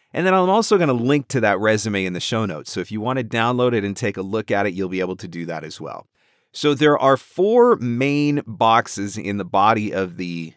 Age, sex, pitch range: 30-49, male, 100-135 Hz